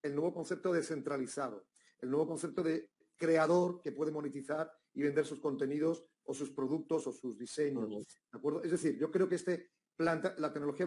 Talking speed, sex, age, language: 180 wpm, male, 40-59, Spanish